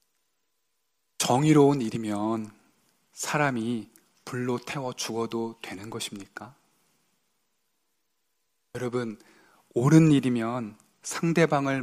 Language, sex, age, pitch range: Korean, male, 20-39, 115-140 Hz